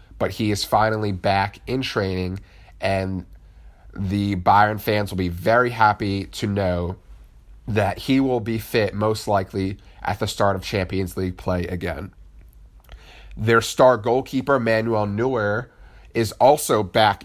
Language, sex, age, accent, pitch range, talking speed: English, male, 30-49, American, 95-110 Hz, 140 wpm